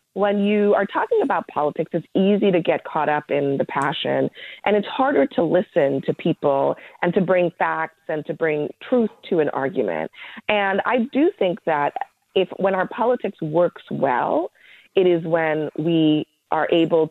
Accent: American